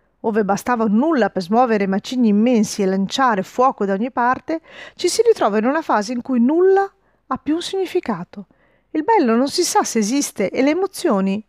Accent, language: native, Italian